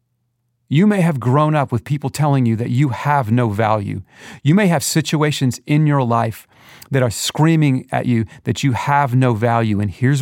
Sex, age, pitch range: male, 40-59, 120-150 Hz